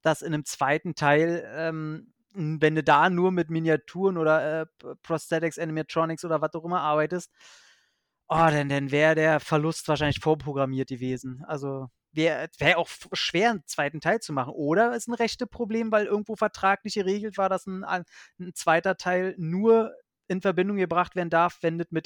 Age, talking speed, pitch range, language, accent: 30-49, 165 wpm, 150-190 Hz, German, German